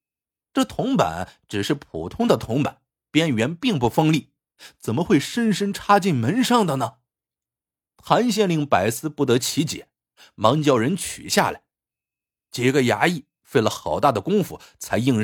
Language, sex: Chinese, male